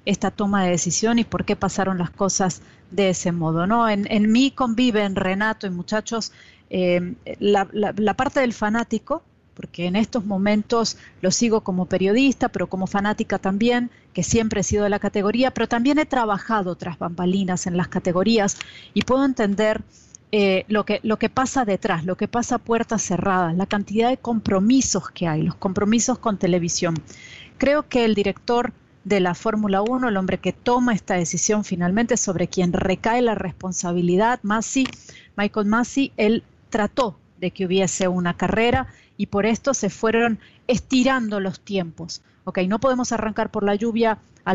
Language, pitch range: Spanish, 190-235 Hz